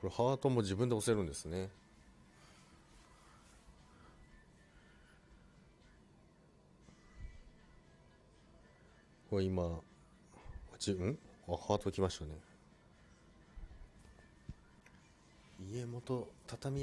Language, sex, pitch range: Japanese, male, 80-110 Hz